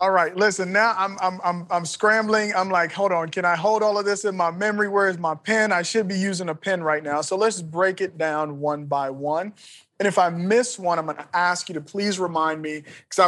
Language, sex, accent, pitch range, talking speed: English, male, American, 150-185 Hz, 260 wpm